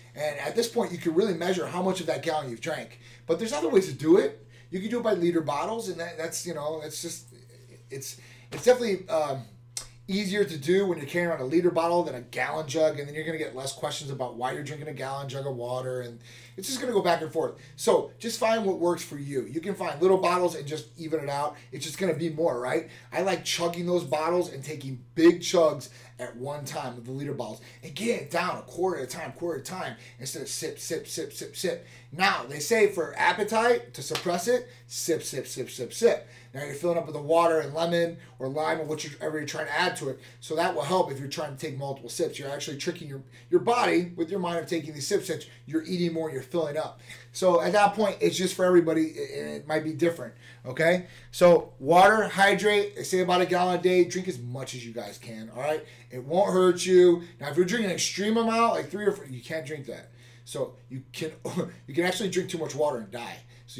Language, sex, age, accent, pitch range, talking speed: English, male, 30-49, American, 130-180 Hz, 255 wpm